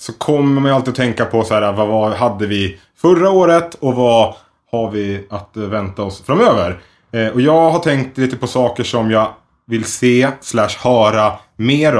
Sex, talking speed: male, 180 wpm